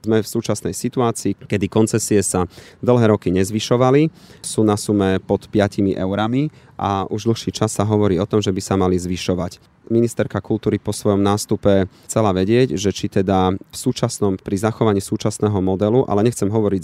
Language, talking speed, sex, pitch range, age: Slovak, 170 wpm, male, 95-115 Hz, 30-49